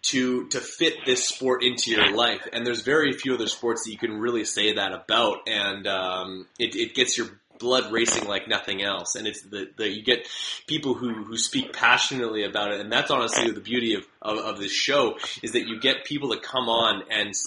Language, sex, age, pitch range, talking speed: English, male, 20-39, 105-130 Hz, 220 wpm